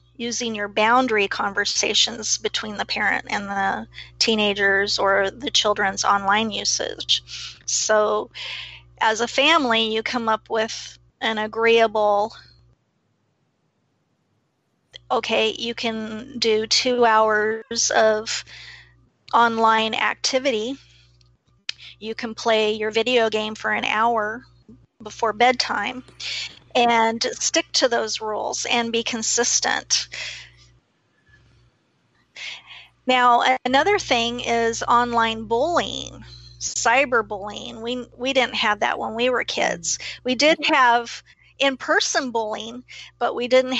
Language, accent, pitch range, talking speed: English, American, 210-245 Hz, 105 wpm